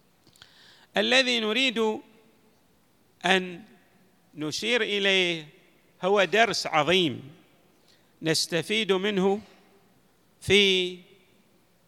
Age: 50-69